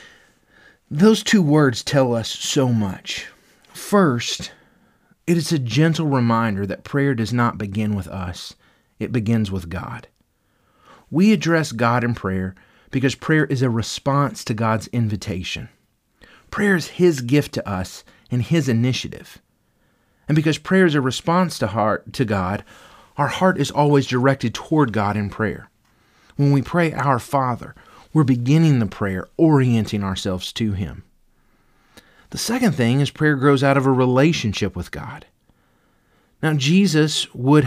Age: 30-49